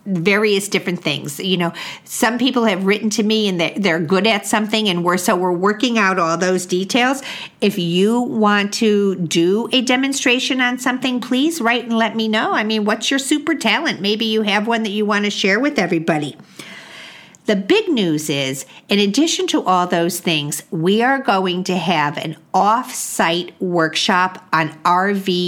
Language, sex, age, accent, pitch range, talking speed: English, female, 50-69, American, 180-230 Hz, 185 wpm